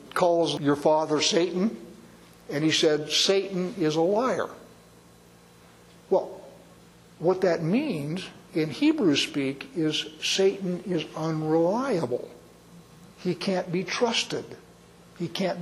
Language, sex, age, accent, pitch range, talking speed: English, male, 60-79, American, 140-195 Hz, 110 wpm